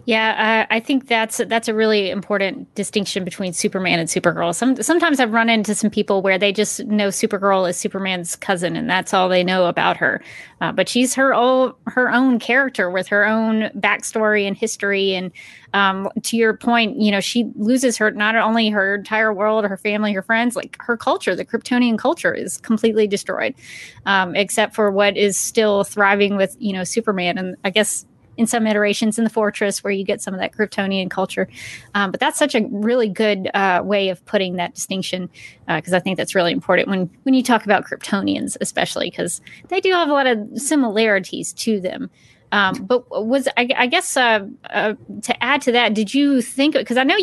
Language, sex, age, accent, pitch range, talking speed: English, female, 30-49, American, 200-240 Hz, 205 wpm